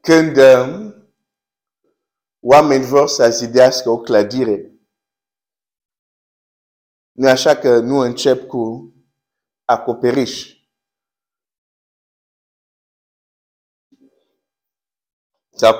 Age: 50-69